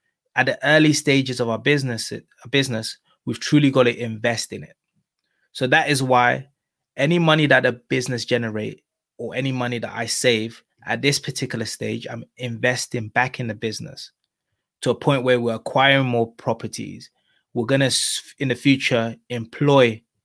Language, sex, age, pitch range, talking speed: English, male, 20-39, 115-130 Hz, 165 wpm